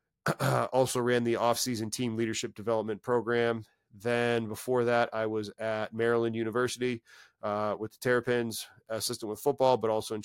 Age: 30-49